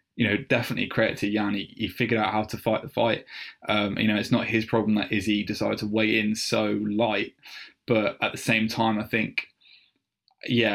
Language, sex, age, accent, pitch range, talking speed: English, male, 10-29, British, 105-120 Hz, 210 wpm